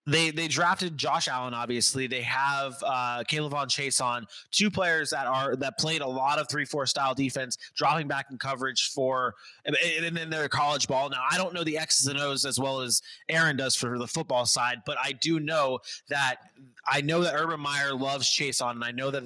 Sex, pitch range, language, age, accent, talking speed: male, 130-150 Hz, English, 20-39, American, 220 wpm